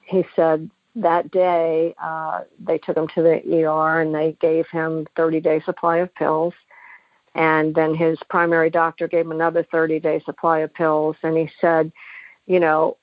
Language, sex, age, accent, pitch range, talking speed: English, female, 50-69, American, 160-180 Hz, 175 wpm